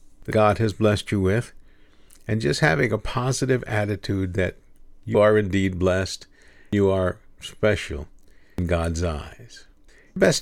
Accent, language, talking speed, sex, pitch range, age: American, English, 145 wpm, male, 95-130 Hz, 50-69